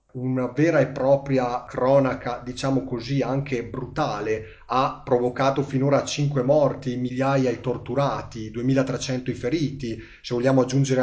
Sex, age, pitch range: male, 30-49, 120-135 Hz